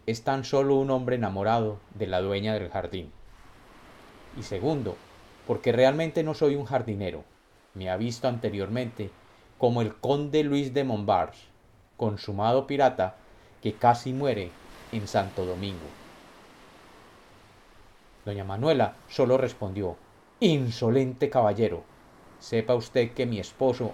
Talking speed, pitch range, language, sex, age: 120 wpm, 105-130 Hz, Spanish, male, 40-59